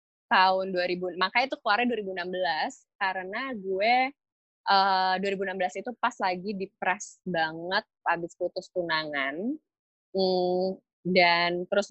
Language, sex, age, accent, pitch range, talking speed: Indonesian, female, 20-39, native, 165-200 Hz, 105 wpm